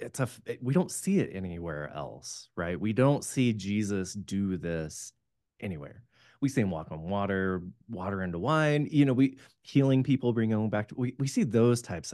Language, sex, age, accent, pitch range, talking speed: English, male, 20-39, American, 95-125 Hz, 195 wpm